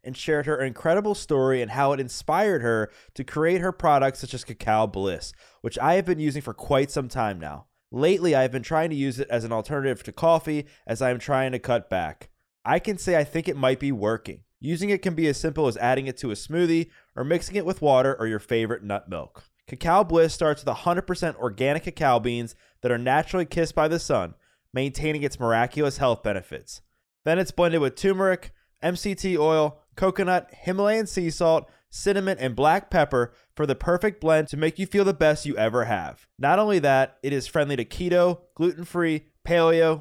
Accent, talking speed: American, 205 wpm